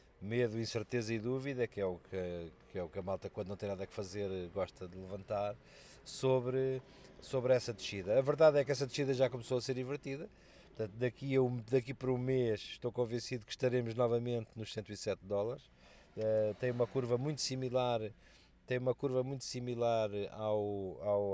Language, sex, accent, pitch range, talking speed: Portuguese, male, Portuguese, 95-120 Hz, 185 wpm